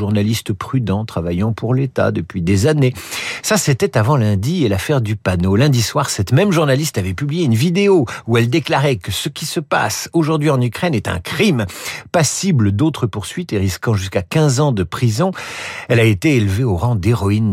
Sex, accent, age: male, French, 50-69